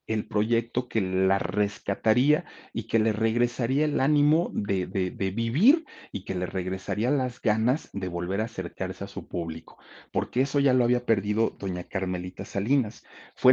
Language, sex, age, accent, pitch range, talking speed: Spanish, male, 40-59, Mexican, 90-115 Hz, 170 wpm